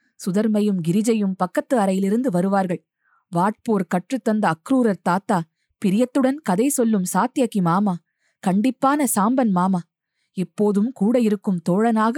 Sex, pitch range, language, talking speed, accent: female, 180-250 Hz, Tamil, 105 wpm, native